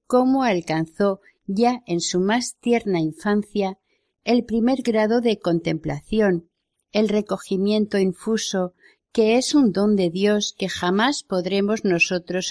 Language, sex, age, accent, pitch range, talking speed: Spanish, female, 50-69, Spanish, 180-235 Hz, 125 wpm